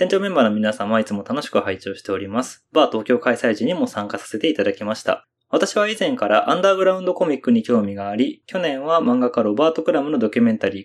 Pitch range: 120-185 Hz